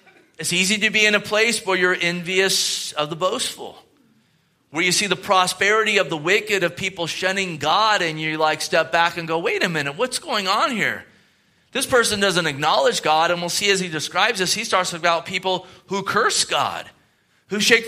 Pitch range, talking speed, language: 155-190 Hz, 200 wpm, English